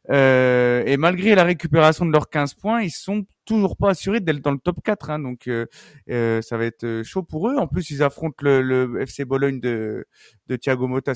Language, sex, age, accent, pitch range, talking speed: French, male, 30-49, French, 130-180 Hz, 215 wpm